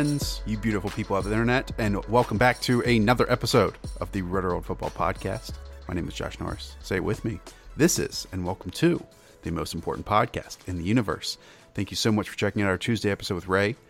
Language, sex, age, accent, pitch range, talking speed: English, male, 30-49, American, 95-125 Hz, 220 wpm